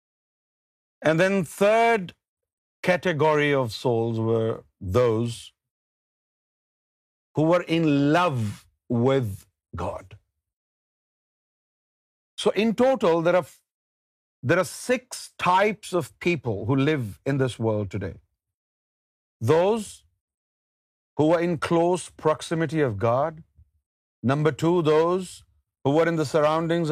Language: Urdu